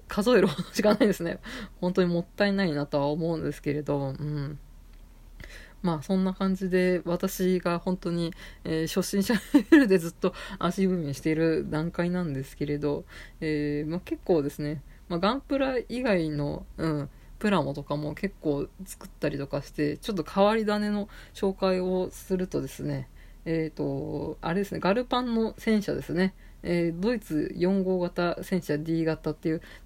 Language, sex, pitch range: Japanese, female, 155-195 Hz